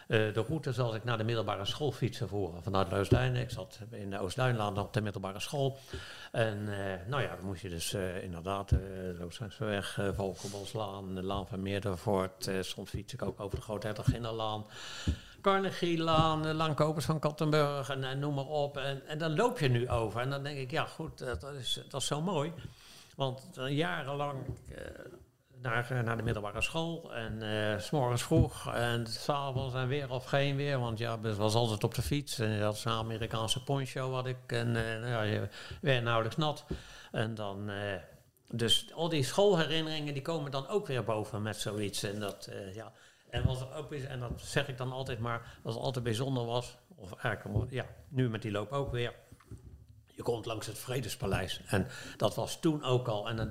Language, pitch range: Dutch, 105-135 Hz